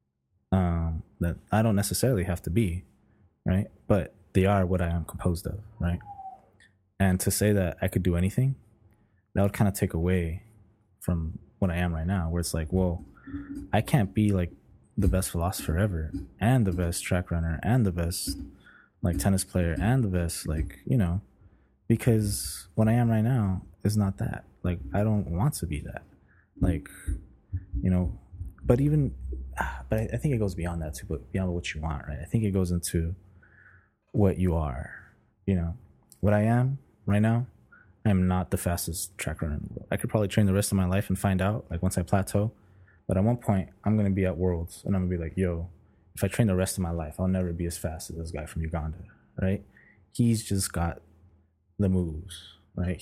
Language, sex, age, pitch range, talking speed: English, male, 20-39, 85-105 Hz, 210 wpm